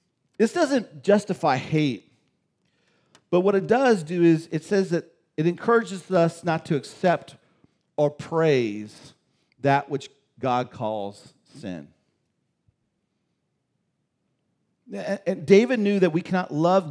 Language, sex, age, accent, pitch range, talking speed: English, male, 40-59, American, 135-190 Hz, 115 wpm